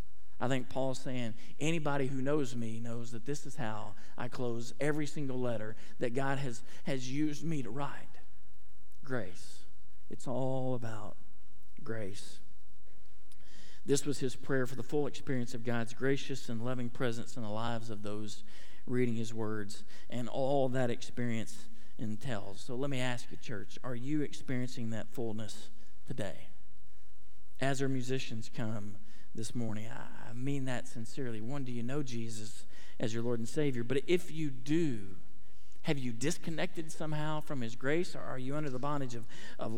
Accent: American